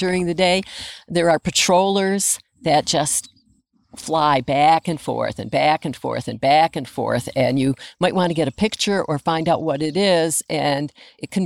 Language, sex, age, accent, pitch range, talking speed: English, female, 50-69, American, 140-195 Hz, 190 wpm